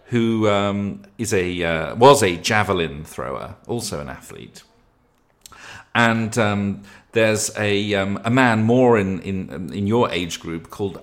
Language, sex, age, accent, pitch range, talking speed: English, male, 40-59, British, 85-115 Hz, 145 wpm